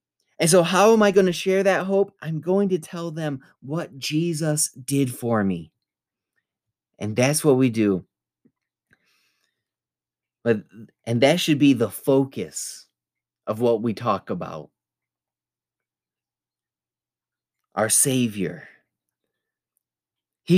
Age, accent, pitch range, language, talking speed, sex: 30-49, American, 105-150 Hz, English, 115 wpm, male